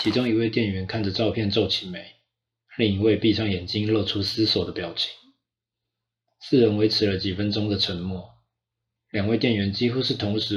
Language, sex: Chinese, male